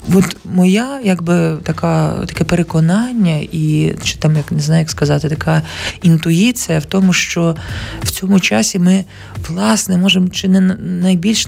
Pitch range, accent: 160-195 Hz, native